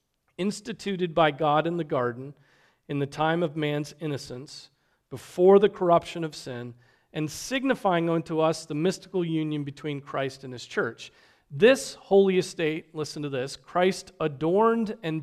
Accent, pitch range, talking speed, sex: American, 135-170 Hz, 150 wpm, male